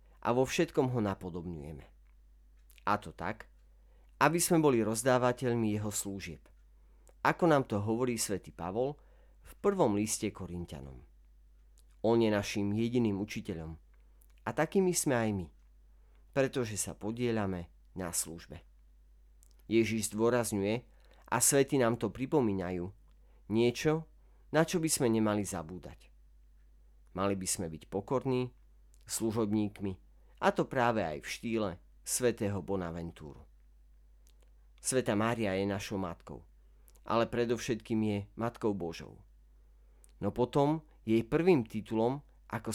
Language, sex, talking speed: Slovak, male, 115 wpm